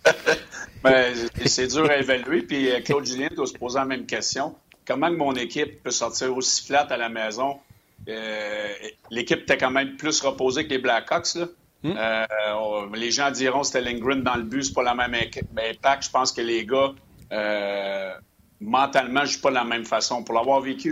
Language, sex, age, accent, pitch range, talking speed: French, male, 50-69, Canadian, 110-135 Hz, 195 wpm